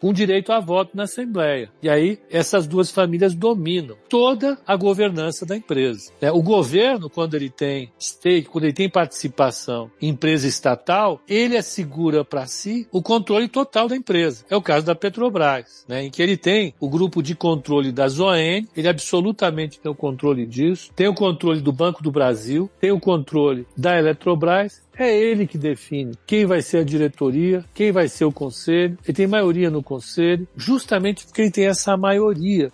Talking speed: 180 wpm